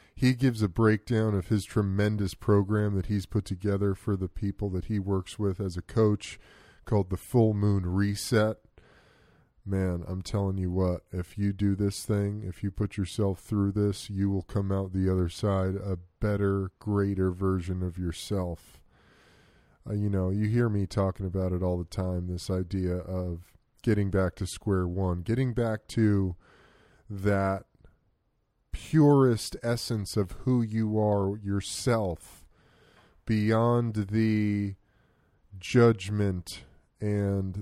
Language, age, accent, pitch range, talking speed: English, 20-39, American, 95-110 Hz, 145 wpm